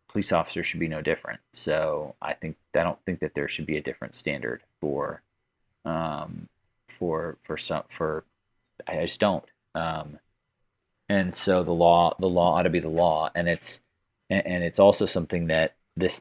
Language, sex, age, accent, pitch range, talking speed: English, male, 30-49, American, 80-90 Hz, 180 wpm